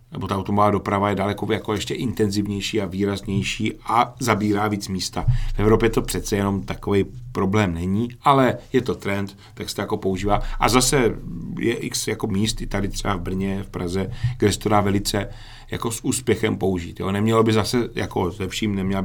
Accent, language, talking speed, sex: native, Czech, 185 wpm, male